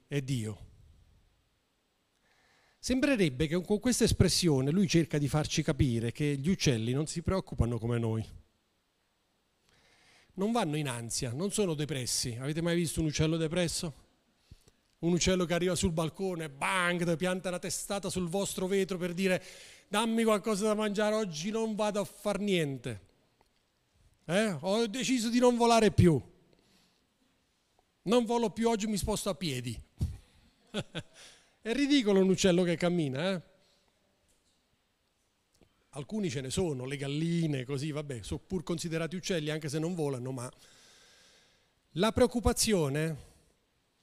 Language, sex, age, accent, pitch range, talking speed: Italian, male, 40-59, native, 140-205 Hz, 135 wpm